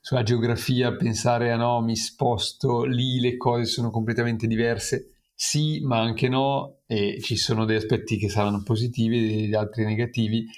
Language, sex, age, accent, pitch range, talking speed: Italian, male, 40-59, native, 110-130 Hz, 170 wpm